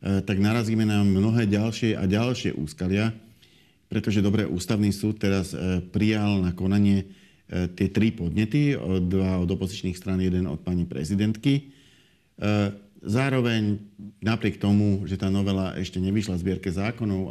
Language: Slovak